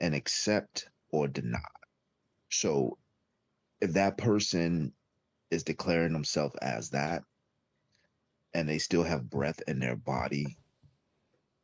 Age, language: 30-49, English